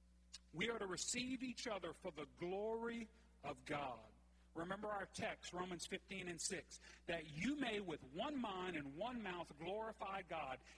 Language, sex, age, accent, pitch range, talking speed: English, male, 40-59, American, 155-235 Hz, 160 wpm